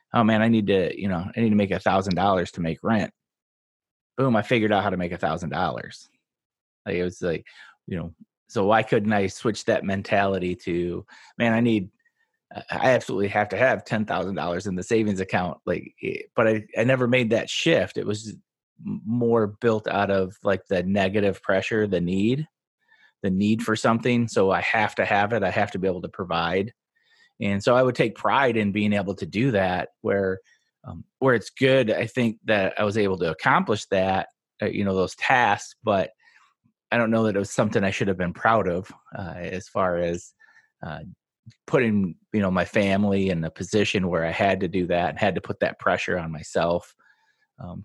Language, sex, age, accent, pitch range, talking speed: English, male, 30-49, American, 95-115 Hz, 205 wpm